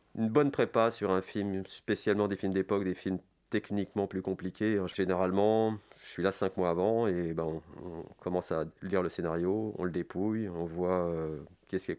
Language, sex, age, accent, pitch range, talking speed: French, male, 40-59, French, 90-105 Hz, 190 wpm